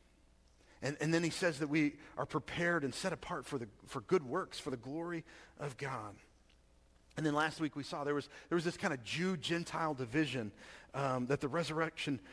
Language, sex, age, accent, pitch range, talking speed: English, male, 40-59, American, 130-165 Hz, 200 wpm